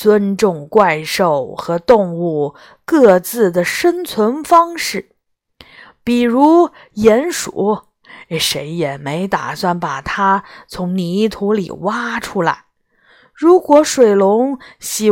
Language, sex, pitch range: Chinese, female, 180-270 Hz